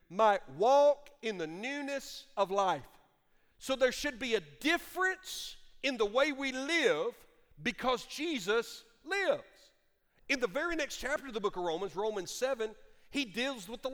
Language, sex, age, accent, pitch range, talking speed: English, male, 50-69, American, 225-290 Hz, 160 wpm